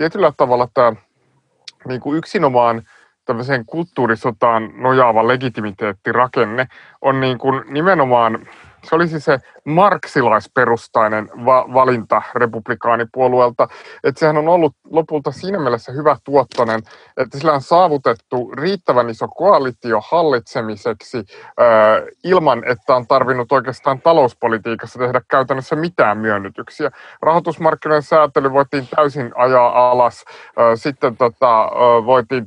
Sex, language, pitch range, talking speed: male, Finnish, 120-150 Hz, 100 wpm